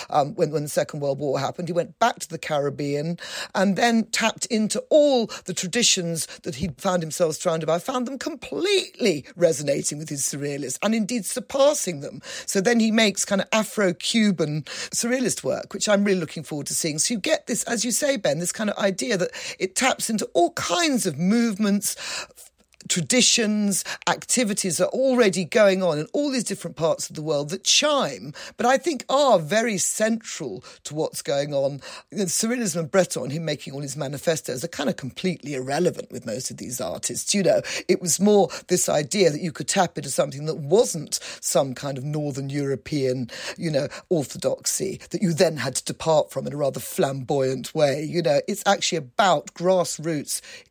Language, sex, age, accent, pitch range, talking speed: English, female, 50-69, British, 155-220 Hz, 190 wpm